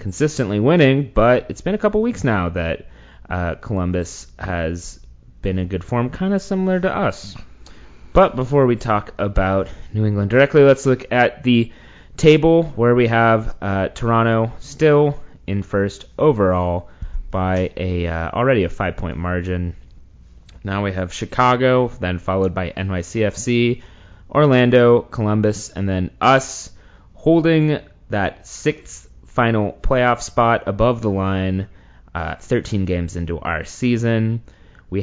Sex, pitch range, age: male, 90-120 Hz, 30-49